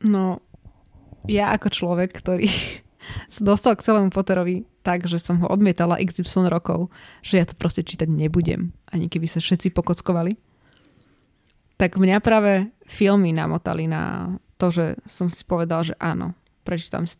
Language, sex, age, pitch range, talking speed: Slovak, female, 20-39, 175-205 Hz, 145 wpm